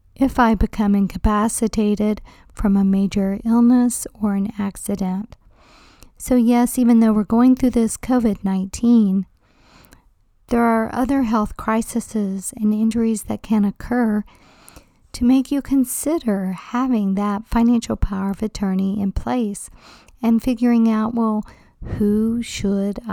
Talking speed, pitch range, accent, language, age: 125 wpm, 200-245 Hz, American, English, 50-69